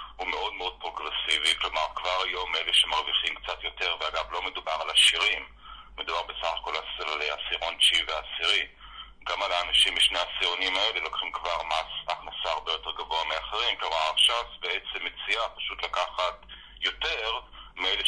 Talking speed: 155 wpm